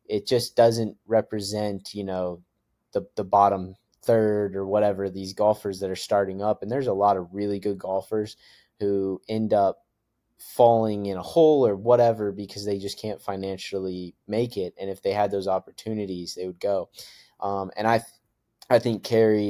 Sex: male